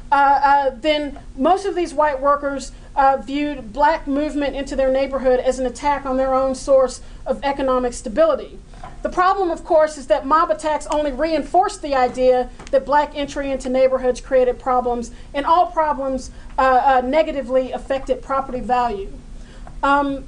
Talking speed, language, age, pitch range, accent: 160 wpm, English, 40-59, 255-300 Hz, American